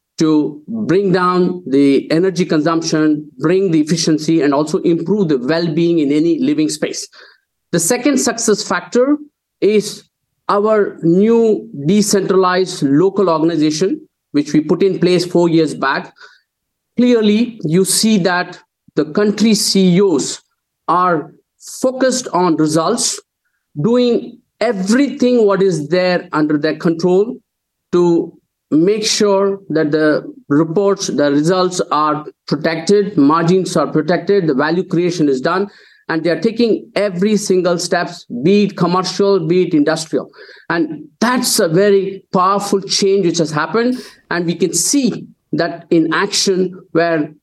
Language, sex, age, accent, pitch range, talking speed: English, male, 50-69, Indian, 165-210 Hz, 130 wpm